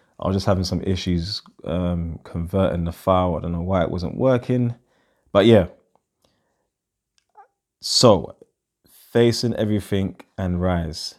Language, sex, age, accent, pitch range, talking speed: English, male, 20-39, British, 90-100 Hz, 130 wpm